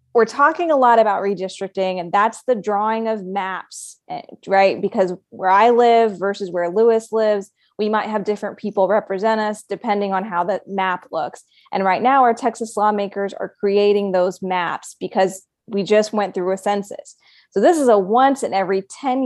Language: English